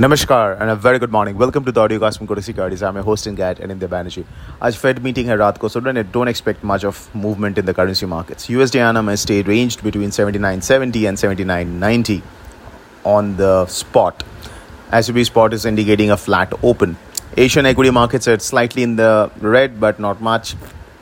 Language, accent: English, Indian